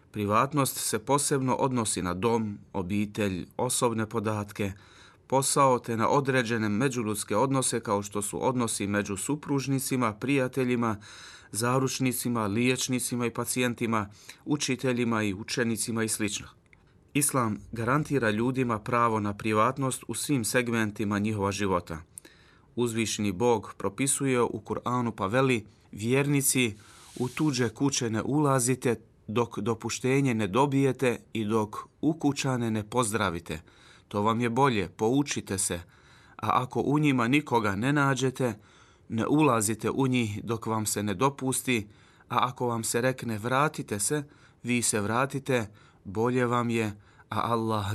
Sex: male